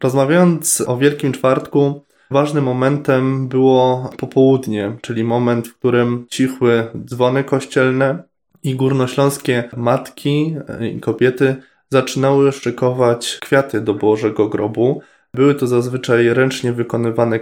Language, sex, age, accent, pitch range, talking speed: Polish, male, 20-39, native, 120-135 Hz, 105 wpm